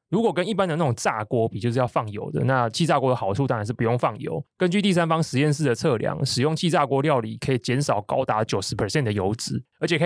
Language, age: Chinese, 20-39